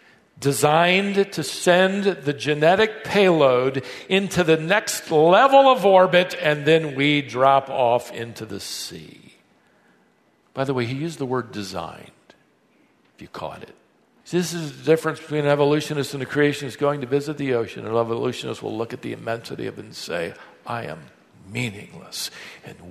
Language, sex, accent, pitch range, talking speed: English, male, American, 125-165 Hz, 170 wpm